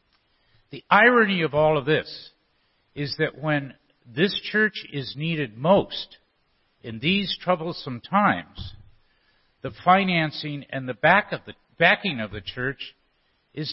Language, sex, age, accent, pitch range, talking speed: English, male, 50-69, American, 135-165 Hz, 120 wpm